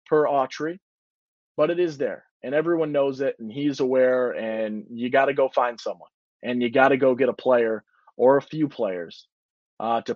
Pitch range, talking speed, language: 120-150 Hz, 200 wpm, English